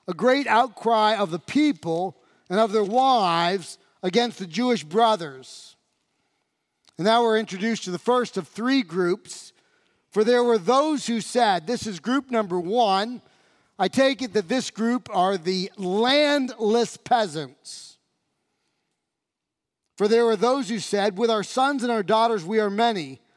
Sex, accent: male, American